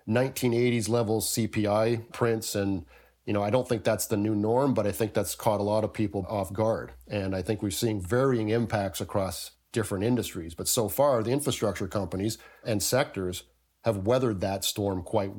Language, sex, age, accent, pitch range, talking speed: English, male, 40-59, American, 100-115 Hz, 185 wpm